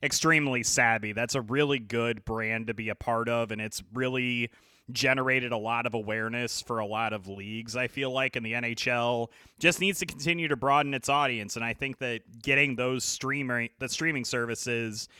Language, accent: English, American